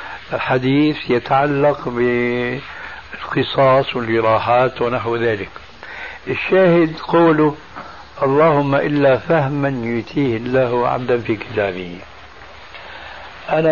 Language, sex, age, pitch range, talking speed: Arabic, male, 60-79, 115-140 Hz, 75 wpm